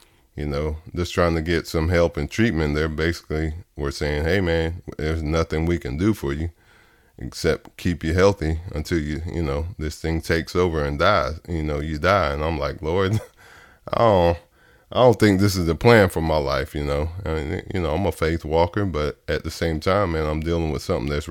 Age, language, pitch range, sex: 20-39, English, 75-85 Hz, male